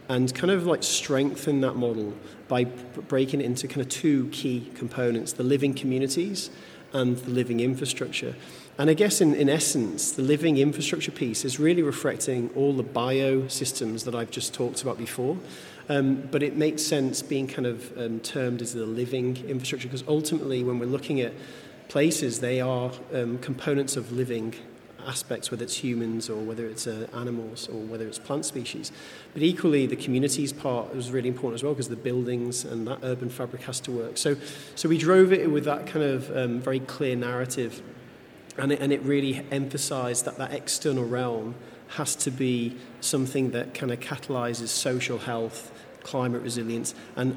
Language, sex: English, male